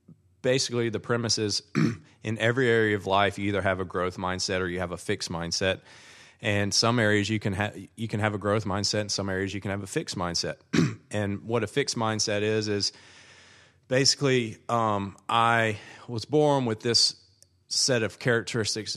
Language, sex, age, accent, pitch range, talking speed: English, male, 30-49, American, 95-110 Hz, 185 wpm